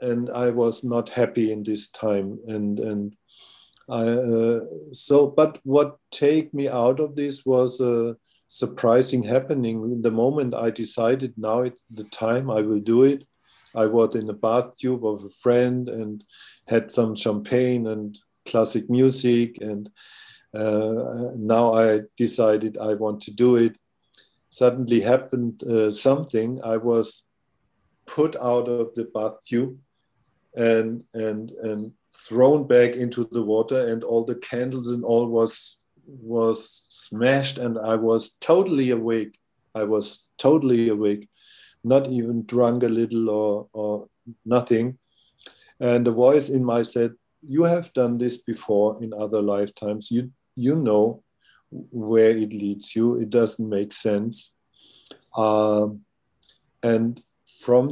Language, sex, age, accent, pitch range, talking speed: English, male, 50-69, German, 110-125 Hz, 140 wpm